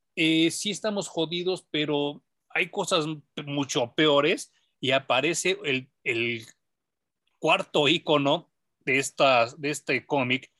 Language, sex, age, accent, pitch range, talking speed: Spanish, male, 40-59, Mexican, 130-170 Hz, 110 wpm